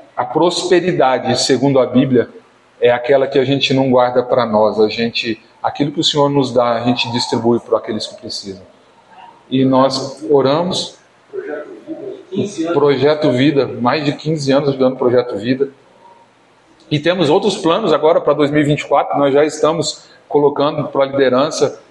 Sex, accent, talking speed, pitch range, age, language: male, Brazilian, 155 wpm, 125-145 Hz, 40-59, Portuguese